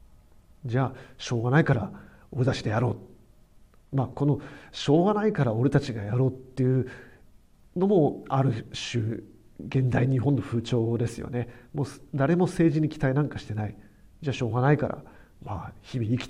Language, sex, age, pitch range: Japanese, male, 40-59, 115-145 Hz